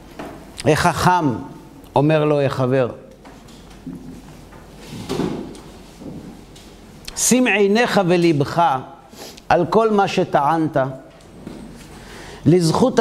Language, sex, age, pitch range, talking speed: Hebrew, male, 50-69, 145-205 Hz, 55 wpm